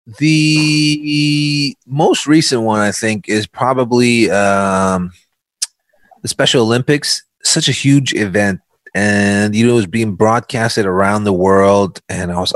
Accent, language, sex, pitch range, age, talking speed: American, English, male, 95-120 Hz, 30-49, 140 wpm